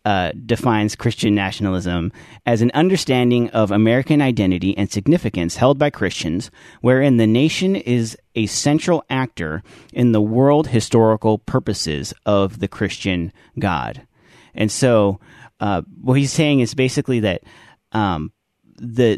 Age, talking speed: 30-49, 130 wpm